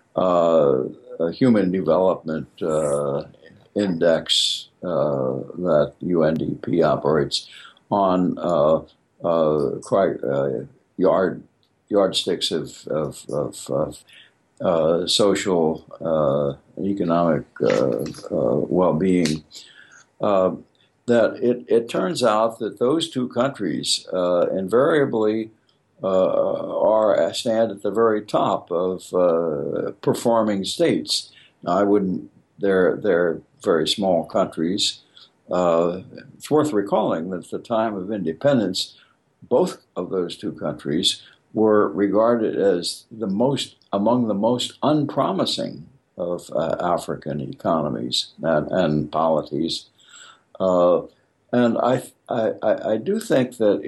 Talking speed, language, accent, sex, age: 110 wpm, English, American, male, 60-79